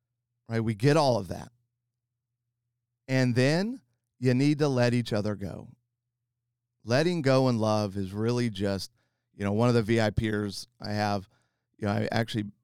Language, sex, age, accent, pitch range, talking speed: English, male, 40-59, American, 110-130 Hz, 160 wpm